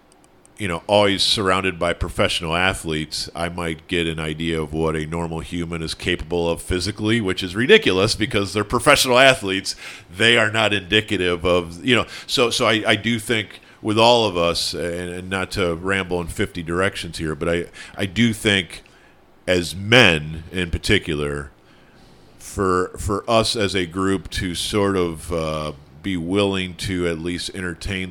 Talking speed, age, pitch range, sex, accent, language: 170 wpm, 50-69, 85-100 Hz, male, American, English